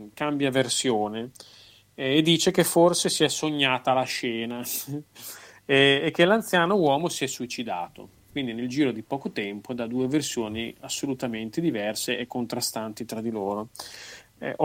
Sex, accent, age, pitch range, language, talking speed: male, native, 30-49, 110-150 Hz, Italian, 150 wpm